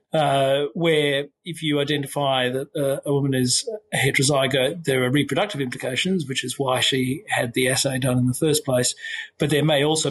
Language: English